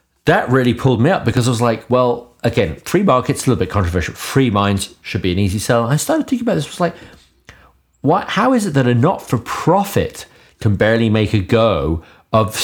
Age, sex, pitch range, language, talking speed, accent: 40-59, male, 95-130 Hz, English, 210 wpm, British